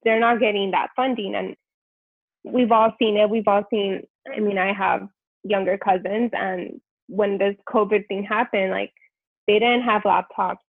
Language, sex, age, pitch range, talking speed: English, female, 20-39, 195-250 Hz, 170 wpm